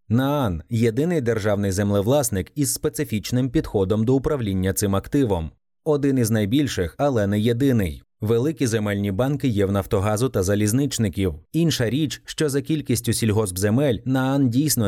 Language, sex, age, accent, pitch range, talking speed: Ukrainian, male, 30-49, native, 100-140 Hz, 140 wpm